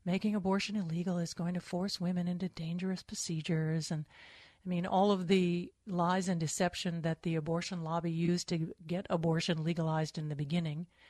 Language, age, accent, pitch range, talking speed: English, 40-59, American, 165-195 Hz, 175 wpm